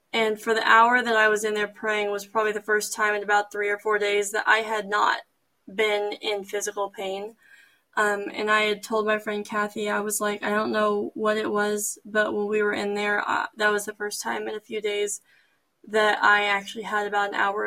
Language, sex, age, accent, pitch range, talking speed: English, female, 10-29, American, 205-225 Hz, 230 wpm